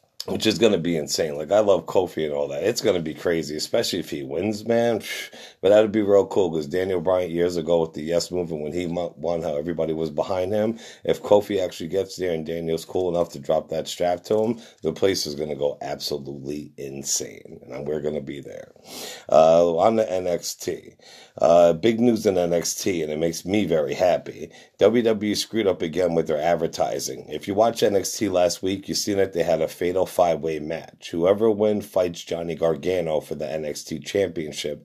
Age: 50-69